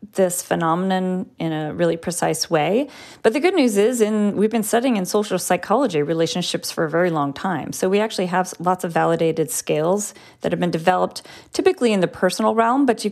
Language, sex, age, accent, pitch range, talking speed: English, female, 30-49, American, 165-200 Hz, 200 wpm